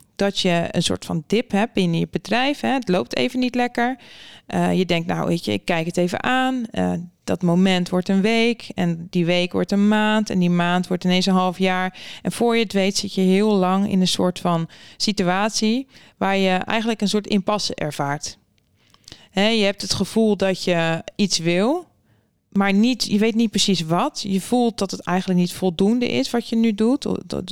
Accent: Dutch